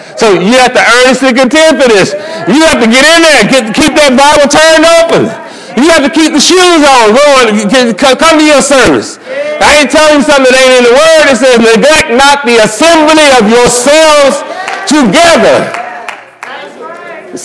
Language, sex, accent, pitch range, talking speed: English, male, American, 210-285 Hz, 175 wpm